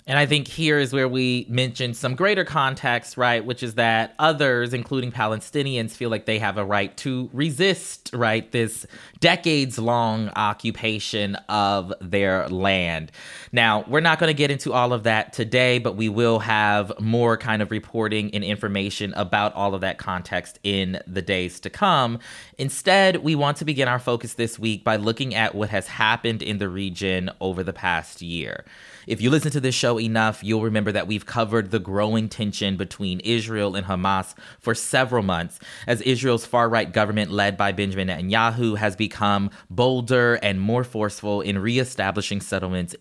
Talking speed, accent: 175 wpm, American